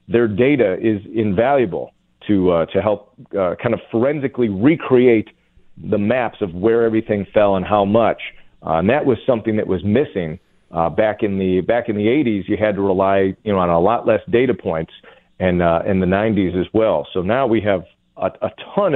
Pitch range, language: 100-125 Hz, English